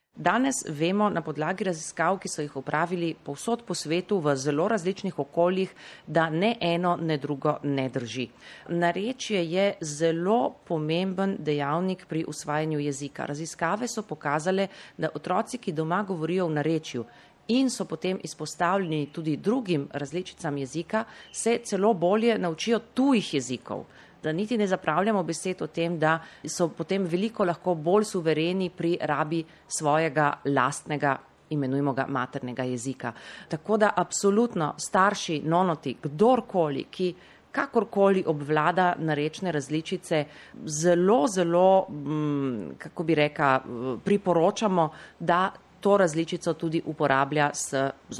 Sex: female